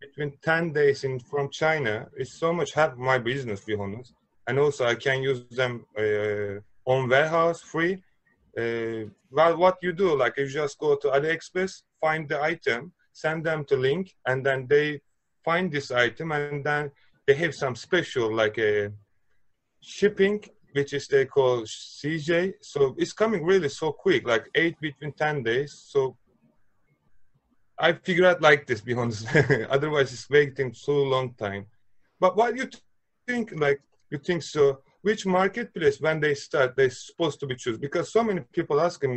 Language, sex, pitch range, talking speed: Turkish, male, 130-170 Hz, 175 wpm